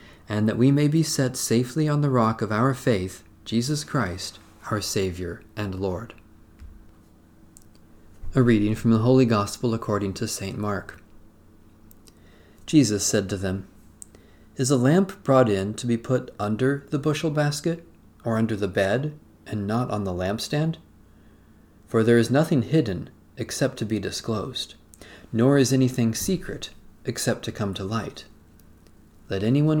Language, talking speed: English, 150 wpm